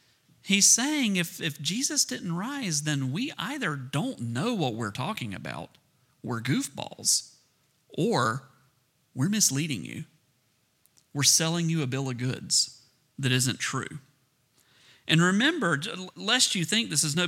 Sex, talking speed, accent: male, 140 wpm, American